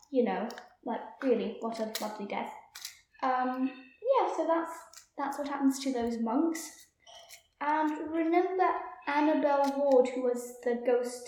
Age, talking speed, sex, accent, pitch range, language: 10-29, 140 wpm, female, British, 240-300 Hz, English